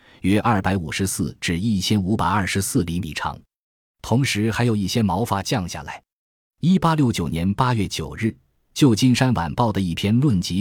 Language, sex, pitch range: Chinese, male, 85-110 Hz